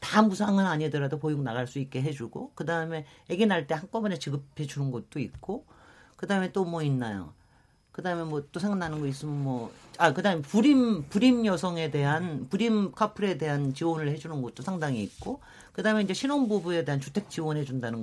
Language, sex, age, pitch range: Korean, male, 40-59, 145-220 Hz